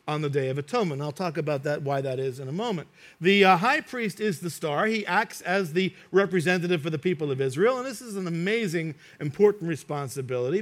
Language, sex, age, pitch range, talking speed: English, male, 50-69, 155-215 Hz, 220 wpm